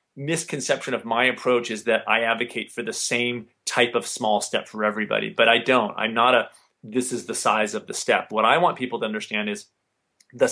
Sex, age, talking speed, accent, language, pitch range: male, 30-49, 215 wpm, American, English, 115-165 Hz